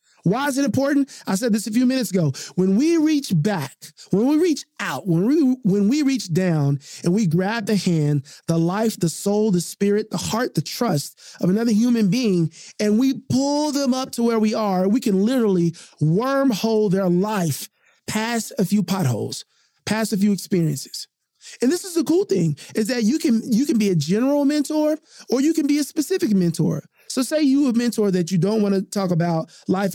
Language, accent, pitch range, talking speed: English, American, 175-240 Hz, 205 wpm